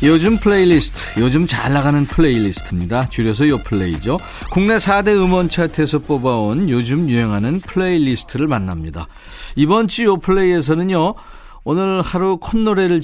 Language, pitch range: Korean, 115-170 Hz